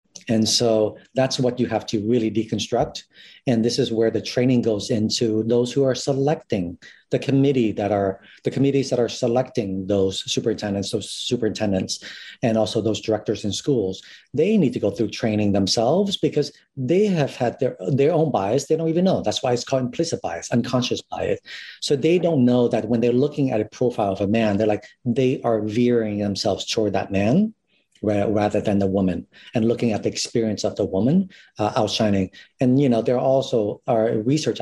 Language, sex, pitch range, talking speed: English, male, 110-130 Hz, 190 wpm